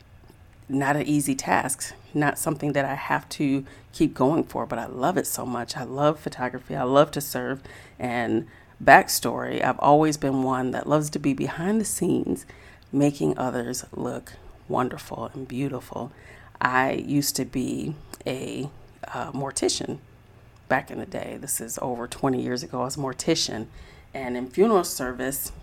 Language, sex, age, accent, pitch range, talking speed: English, female, 40-59, American, 125-145 Hz, 165 wpm